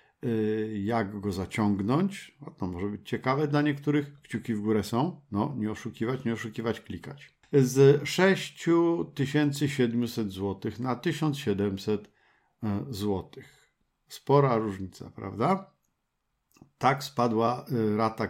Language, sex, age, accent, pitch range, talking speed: Polish, male, 50-69, native, 105-135 Hz, 100 wpm